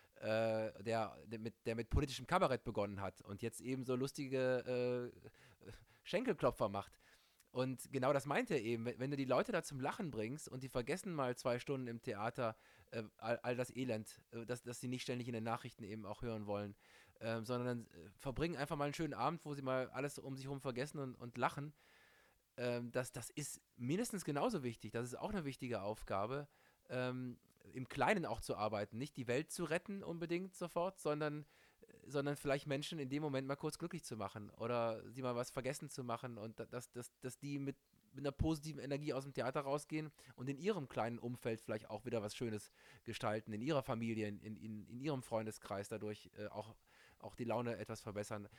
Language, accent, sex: English, German, male